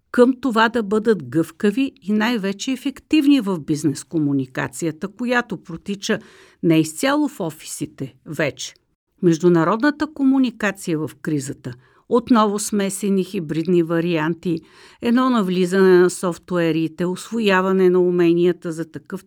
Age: 50-69